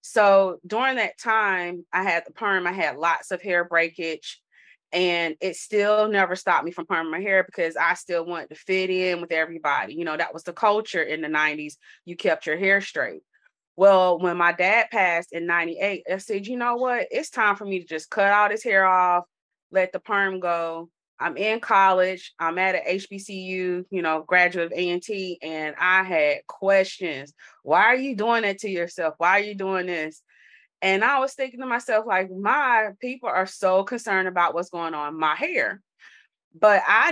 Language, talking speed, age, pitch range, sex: English, 195 wpm, 30-49, 170-205 Hz, female